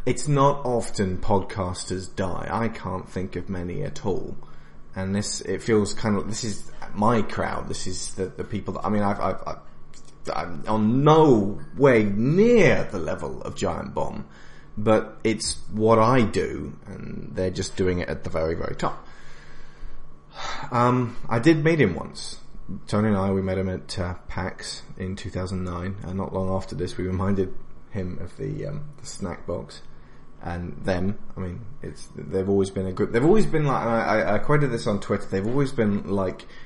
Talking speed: 185 wpm